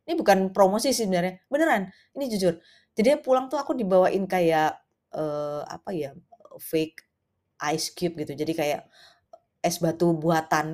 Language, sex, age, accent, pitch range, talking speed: Indonesian, female, 20-39, native, 165-220 Hz, 145 wpm